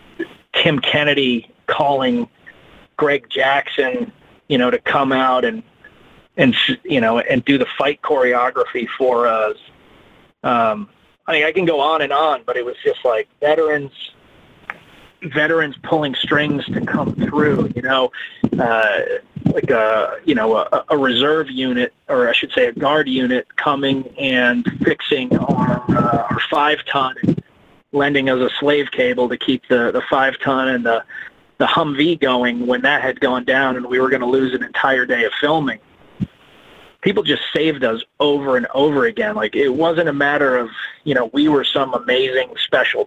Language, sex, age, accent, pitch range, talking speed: English, male, 40-59, American, 130-175 Hz, 165 wpm